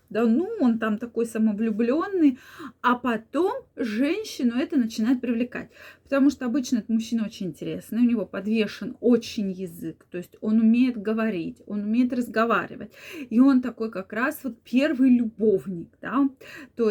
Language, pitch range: Russian, 215-275 Hz